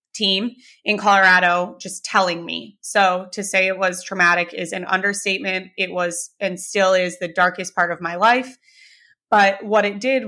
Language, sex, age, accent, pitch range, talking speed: English, female, 30-49, American, 180-205 Hz, 175 wpm